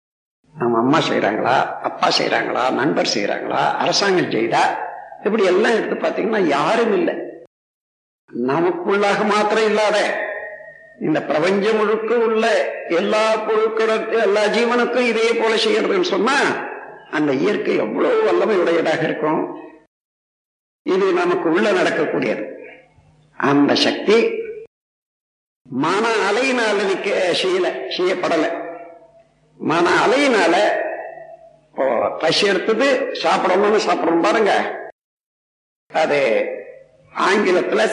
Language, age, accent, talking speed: Tamil, 60-79, native, 85 wpm